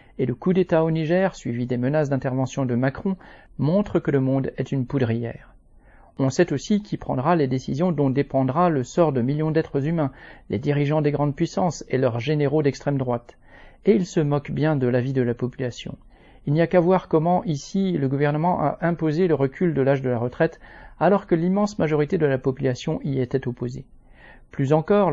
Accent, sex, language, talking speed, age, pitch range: French, male, French, 200 wpm, 40-59, 130-170 Hz